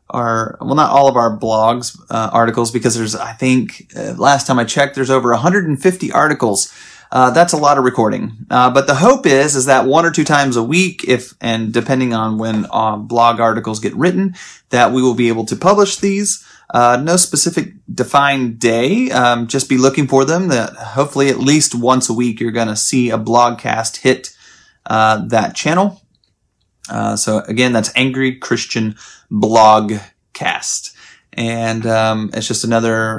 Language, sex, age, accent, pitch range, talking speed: English, male, 30-49, American, 115-155 Hz, 185 wpm